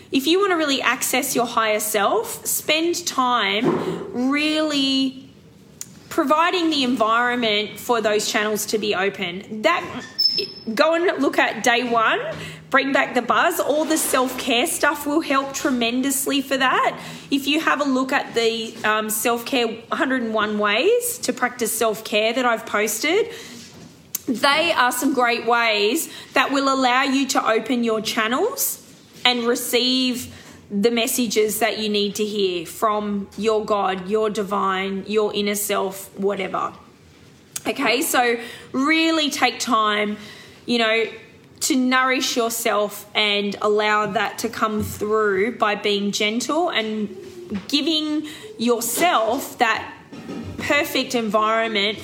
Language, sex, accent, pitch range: English, female, Australian, 215-285 Hz